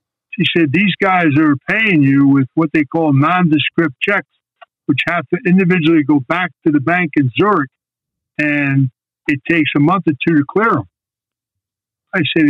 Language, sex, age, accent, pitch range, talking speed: English, male, 60-79, American, 140-175 Hz, 175 wpm